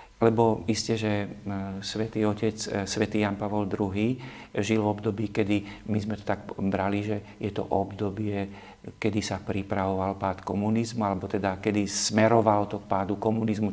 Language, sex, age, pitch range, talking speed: Slovak, male, 50-69, 100-110 Hz, 155 wpm